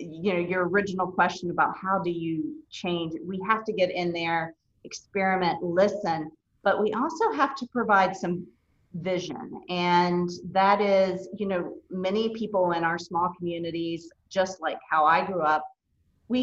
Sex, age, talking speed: female, 40-59, 160 wpm